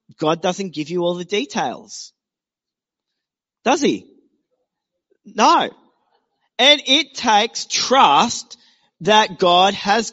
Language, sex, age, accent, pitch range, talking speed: English, male, 30-49, Australian, 135-210 Hz, 100 wpm